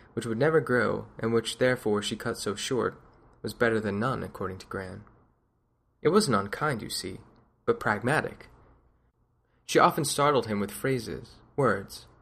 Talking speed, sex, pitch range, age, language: 155 wpm, male, 105-125 Hz, 20-39, English